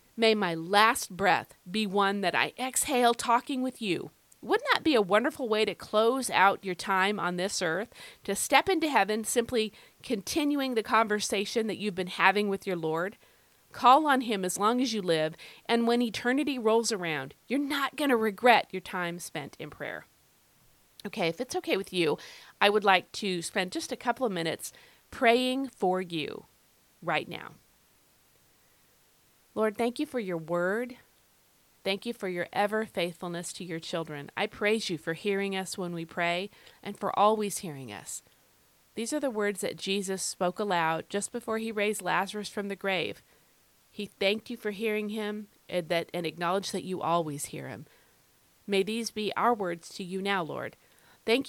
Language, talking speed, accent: English, 180 wpm, American